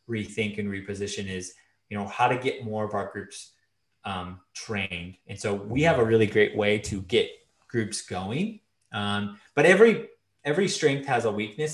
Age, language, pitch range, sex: 20-39, English, 100-120 Hz, male